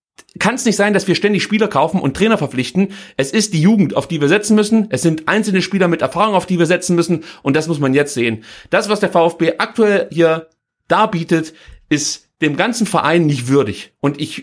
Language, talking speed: German, 220 wpm